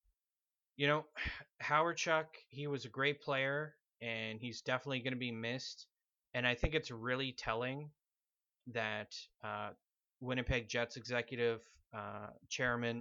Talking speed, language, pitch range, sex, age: 135 wpm, English, 110-125 Hz, male, 30-49